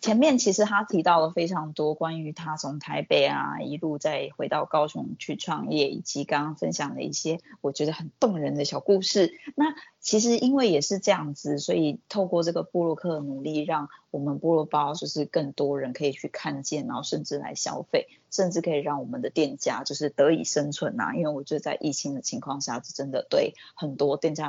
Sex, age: female, 20-39